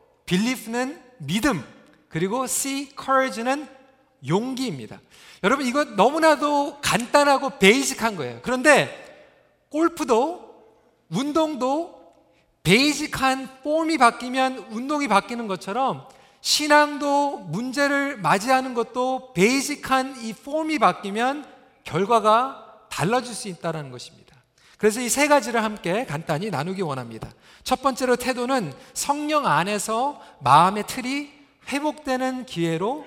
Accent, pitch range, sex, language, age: native, 210-280 Hz, male, Korean, 40-59